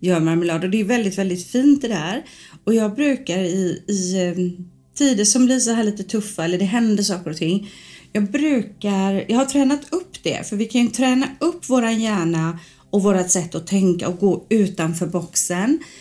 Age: 40-59